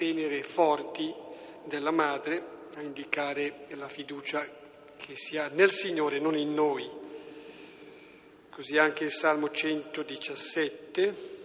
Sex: male